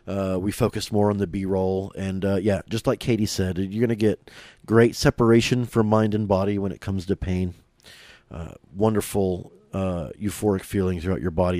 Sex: male